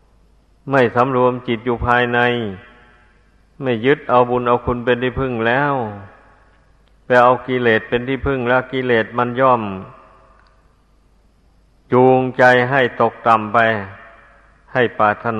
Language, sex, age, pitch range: Thai, male, 60-79, 110-130 Hz